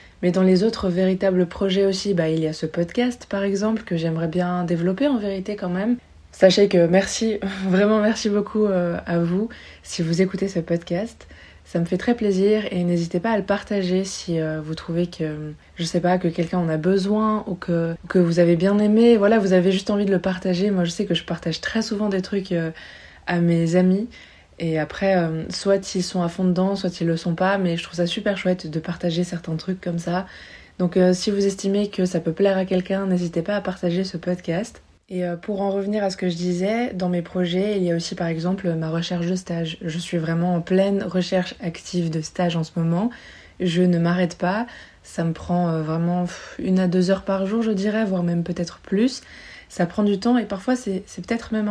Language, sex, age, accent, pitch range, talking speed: French, female, 20-39, French, 175-200 Hz, 230 wpm